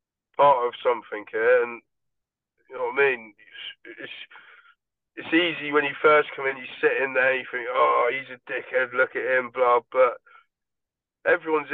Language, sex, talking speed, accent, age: English, male, 180 wpm, British, 20-39